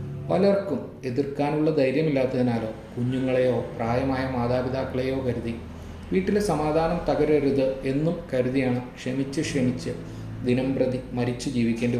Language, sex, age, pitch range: Malayalam, male, 30-49, 115-135 Hz